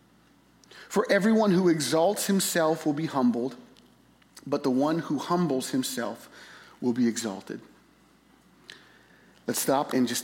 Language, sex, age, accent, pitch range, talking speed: English, male, 40-59, American, 125-170 Hz, 125 wpm